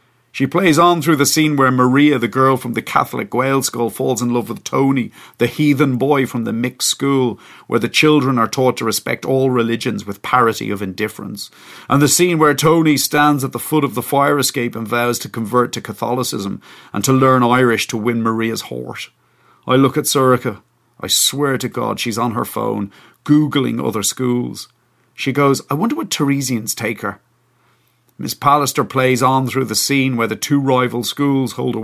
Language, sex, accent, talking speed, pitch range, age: English, male, Irish, 195 wpm, 115-135 Hz, 40-59